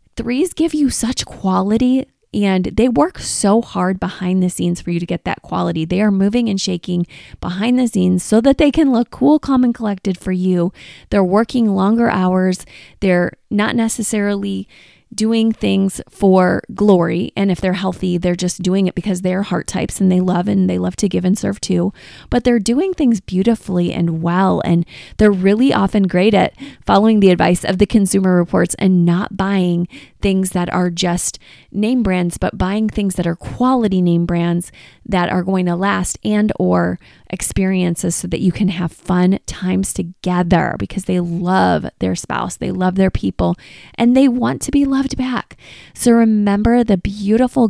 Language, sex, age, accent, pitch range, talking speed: English, female, 20-39, American, 180-225 Hz, 180 wpm